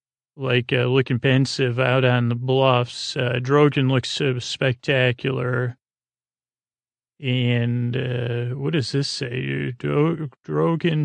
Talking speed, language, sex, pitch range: 110 wpm, English, male, 125-140 Hz